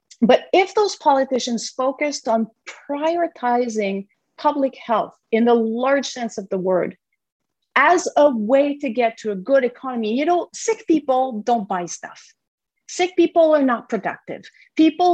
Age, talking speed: 40-59, 150 wpm